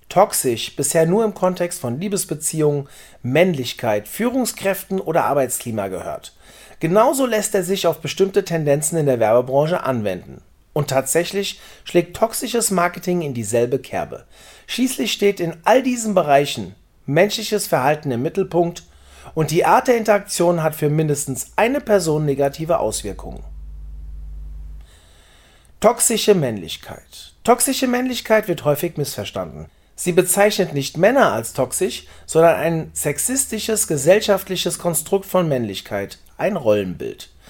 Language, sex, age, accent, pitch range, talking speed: German, male, 40-59, German, 140-200 Hz, 120 wpm